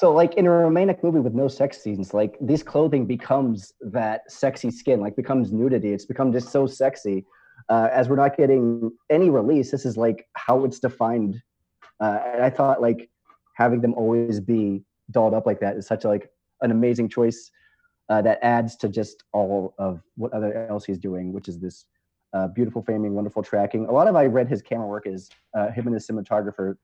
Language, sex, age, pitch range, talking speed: English, male, 30-49, 105-145 Hz, 205 wpm